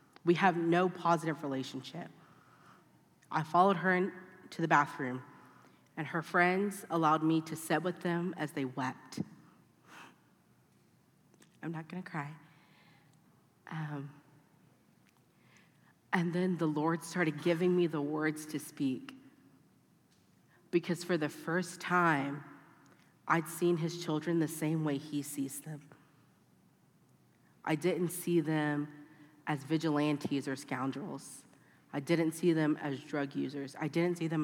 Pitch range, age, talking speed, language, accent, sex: 145-175 Hz, 40-59, 130 wpm, English, American, female